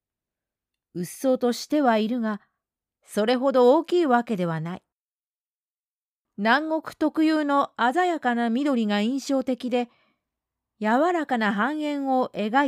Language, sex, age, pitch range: Japanese, female, 40-59, 180-275 Hz